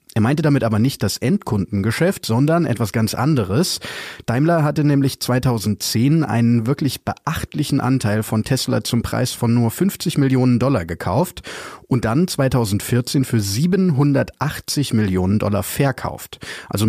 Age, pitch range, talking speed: 30-49, 110-145 Hz, 135 wpm